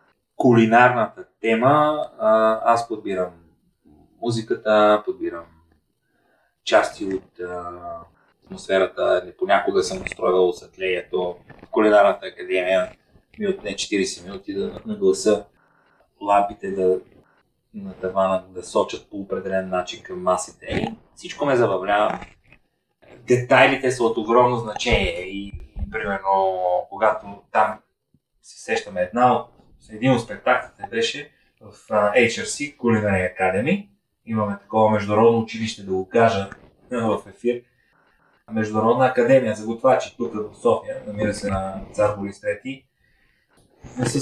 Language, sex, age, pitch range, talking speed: Bulgarian, male, 30-49, 100-125 Hz, 115 wpm